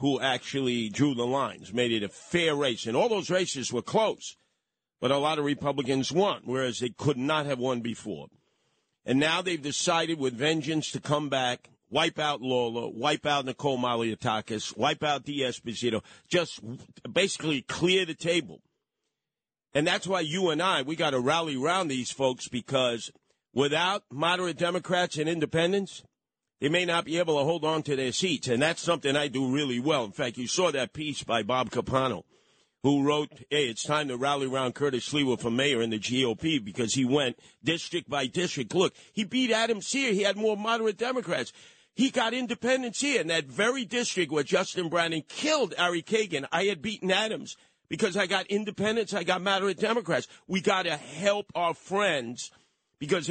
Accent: American